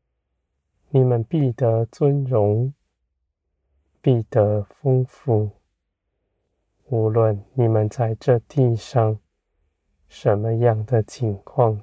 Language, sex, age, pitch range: Chinese, male, 20-39, 80-120 Hz